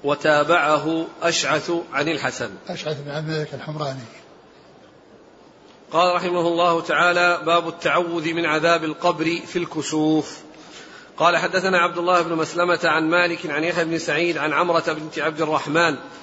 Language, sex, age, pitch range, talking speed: Arabic, male, 40-59, 160-180 Hz, 120 wpm